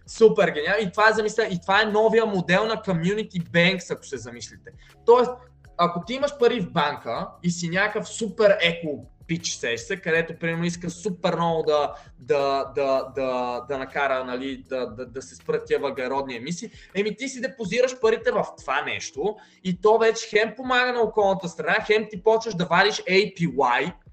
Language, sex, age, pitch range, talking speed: Bulgarian, male, 20-39, 155-210 Hz, 180 wpm